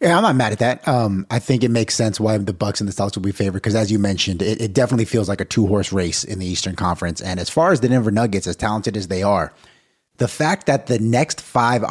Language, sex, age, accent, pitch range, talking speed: English, male, 30-49, American, 95-120 Hz, 275 wpm